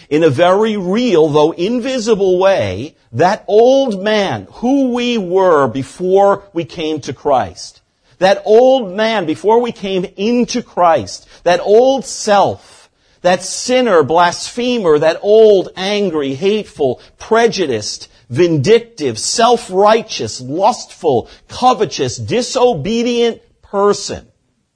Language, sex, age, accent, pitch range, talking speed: English, male, 50-69, American, 150-230 Hz, 105 wpm